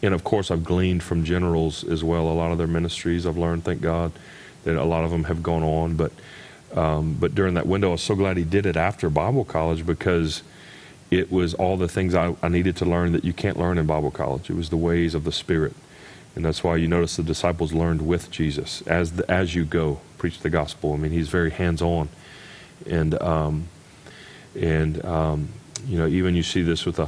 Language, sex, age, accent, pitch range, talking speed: English, male, 40-59, American, 80-90 Hz, 225 wpm